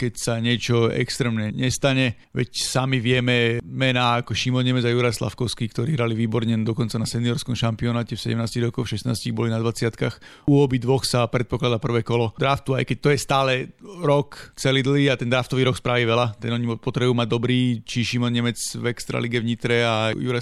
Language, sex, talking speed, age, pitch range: Slovak, male, 190 wpm, 40-59, 120-130 Hz